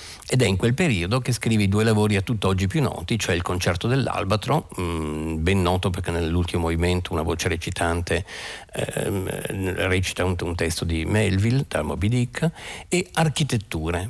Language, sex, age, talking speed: Italian, male, 50-69, 160 wpm